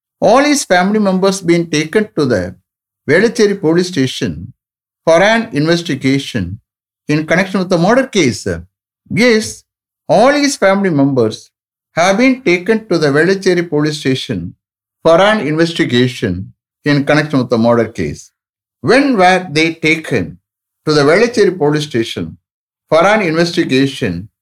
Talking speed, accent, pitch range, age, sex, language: 135 wpm, Indian, 115-175 Hz, 60-79, male, English